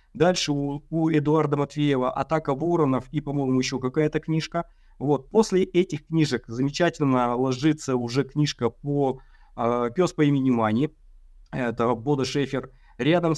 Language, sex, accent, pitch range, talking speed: Russian, male, native, 130-165 Hz, 130 wpm